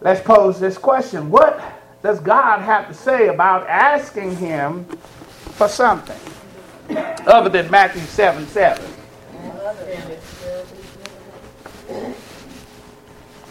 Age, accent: 40-59, American